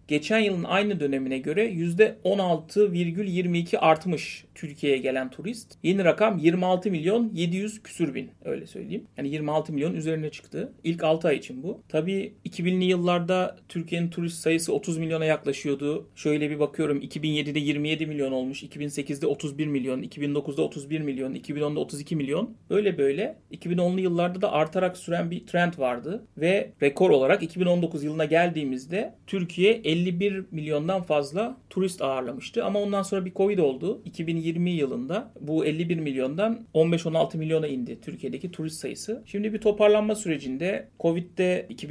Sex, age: male, 40-59